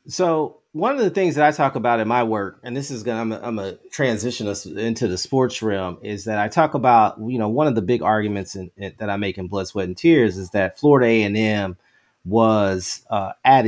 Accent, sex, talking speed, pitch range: American, male, 245 wpm, 100-120 Hz